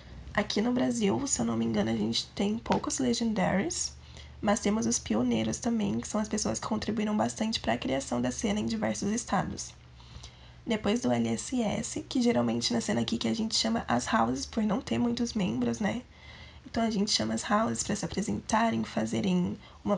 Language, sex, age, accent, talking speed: Portuguese, female, 10-29, Brazilian, 190 wpm